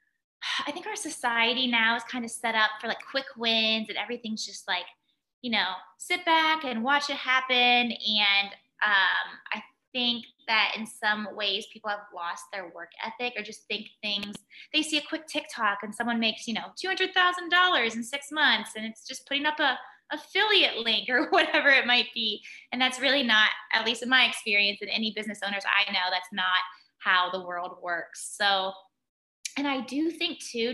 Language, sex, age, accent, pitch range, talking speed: English, female, 20-39, American, 205-255 Hz, 190 wpm